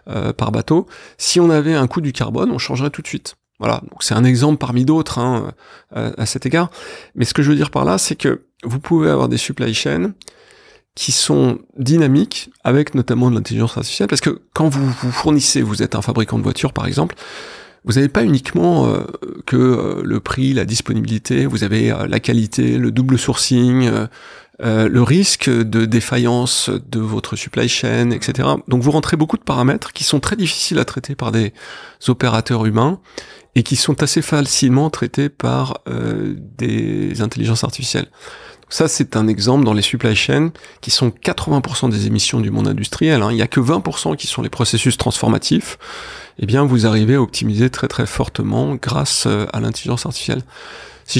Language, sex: French, male